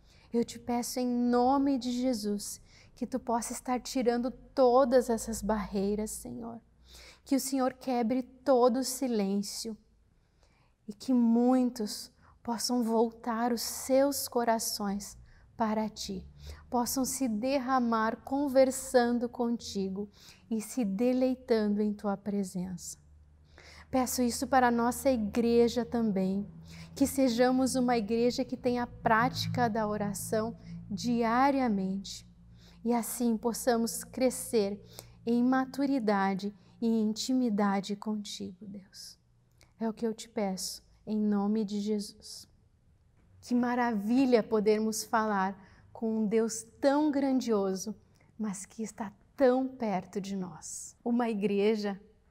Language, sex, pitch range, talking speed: Portuguese, female, 205-250 Hz, 115 wpm